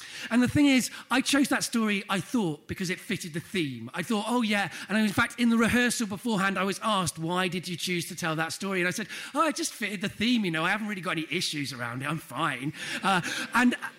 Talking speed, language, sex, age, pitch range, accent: 255 wpm, English, male, 40-59, 170-215 Hz, British